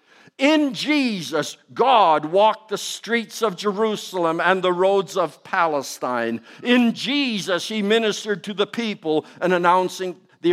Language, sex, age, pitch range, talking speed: English, male, 60-79, 170-240 Hz, 130 wpm